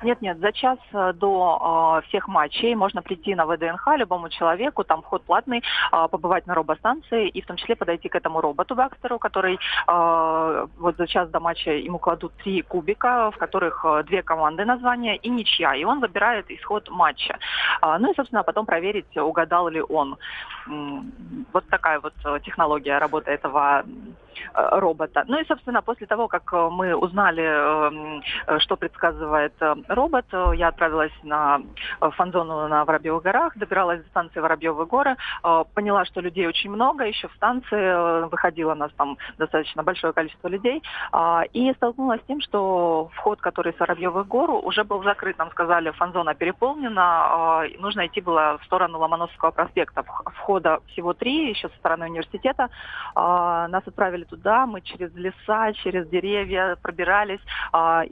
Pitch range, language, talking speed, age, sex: 165-210 Hz, Russian, 150 wpm, 30-49, female